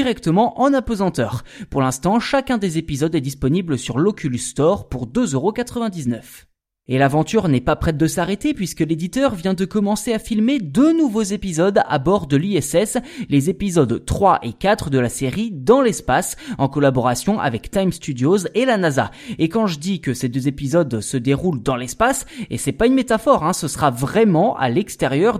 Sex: male